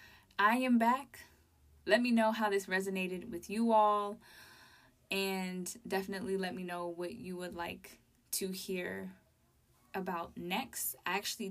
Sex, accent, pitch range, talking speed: female, American, 175-205 Hz, 140 wpm